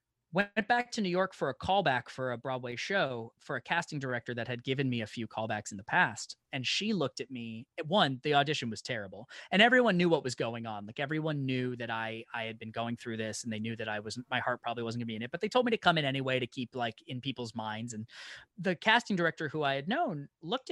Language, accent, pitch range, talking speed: English, American, 115-150 Hz, 265 wpm